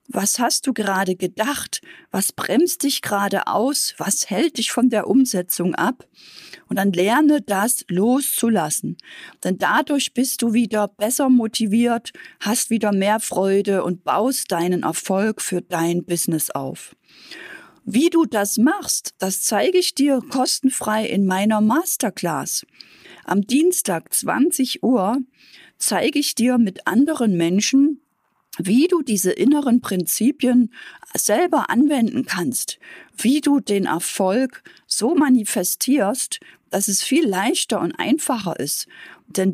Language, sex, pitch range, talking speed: German, female, 200-280 Hz, 130 wpm